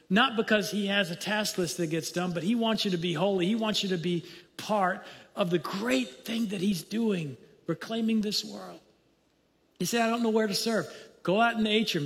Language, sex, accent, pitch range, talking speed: English, male, American, 175-225 Hz, 230 wpm